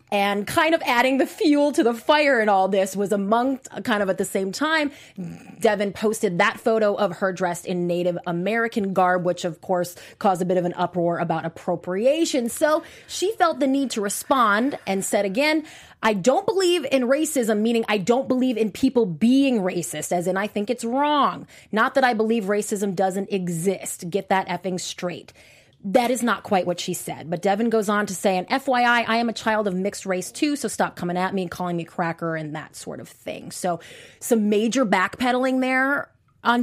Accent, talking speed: American, 205 wpm